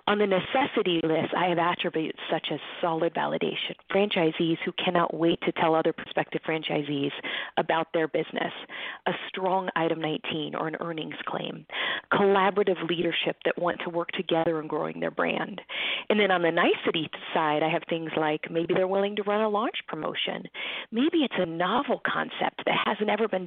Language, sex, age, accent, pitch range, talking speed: English, female, 40-59, American, 165-190 Hz, 175 wpm